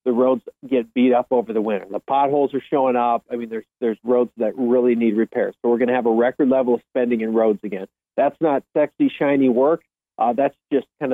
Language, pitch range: English, 120-135 Hz